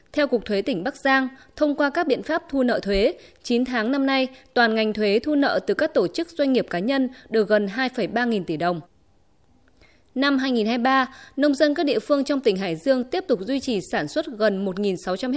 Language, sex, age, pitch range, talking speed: Vietnamese, female, 20-39, 215-280 Hz, 220 wpm